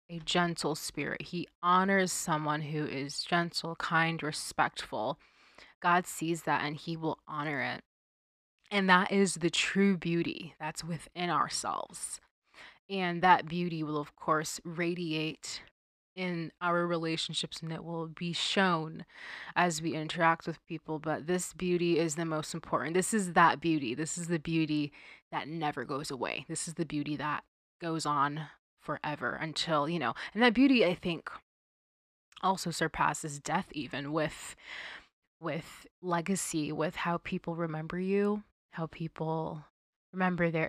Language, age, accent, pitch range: English, 20-39, American, 155-180 Hz